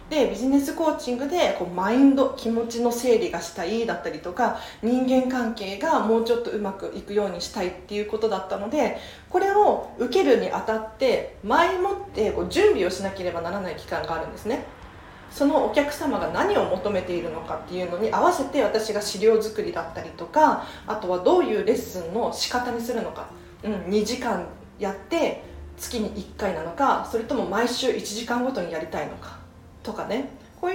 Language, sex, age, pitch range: Japanese, female, 40-59, 200-280 Hz